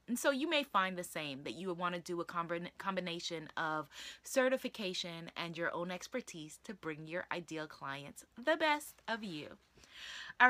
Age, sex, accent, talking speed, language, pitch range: 20-39, female, American, 175 wpm, English, 200-305 Hz